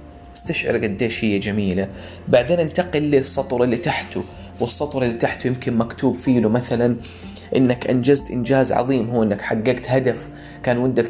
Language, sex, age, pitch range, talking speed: Arabic, male, 30-49, 100-140 Hz, 140 wpm